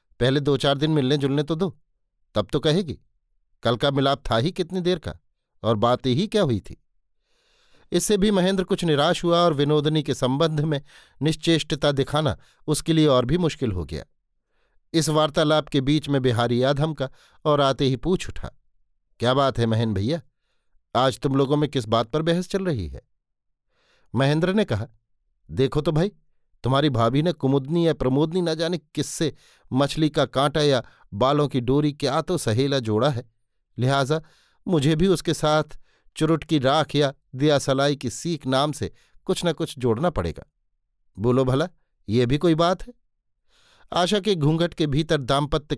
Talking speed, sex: 175 wpm, male